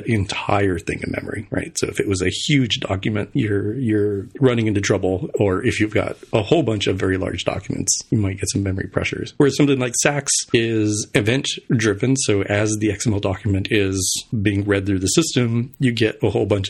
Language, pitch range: English, 95-120 Hz